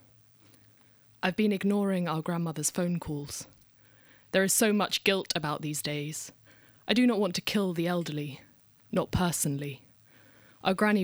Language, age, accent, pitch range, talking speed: English, 20-39, British, 140-175 Hz, 145 wpm